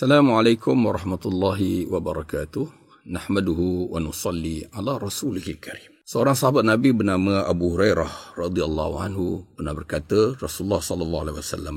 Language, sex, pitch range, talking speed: Malay, male, 90-135 Hz, 115 wpm